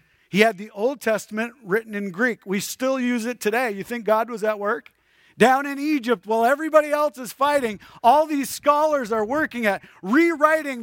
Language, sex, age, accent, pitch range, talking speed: English, male, 40-59, American, 160-230 Hz, 190 wpm